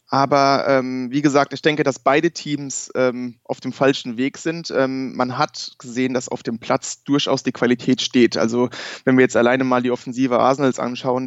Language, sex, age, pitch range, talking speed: German, male, 20-39, 125-145 Hz, 195 wpm